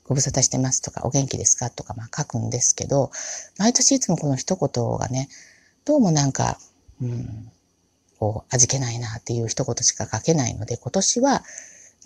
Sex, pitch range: female, 115-165 Hz